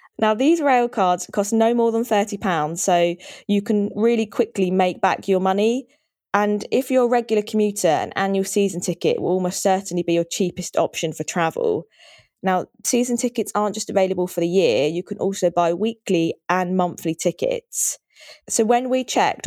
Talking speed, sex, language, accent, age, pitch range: 180 wpm, female, English, British, 20-39, 175-220 Hz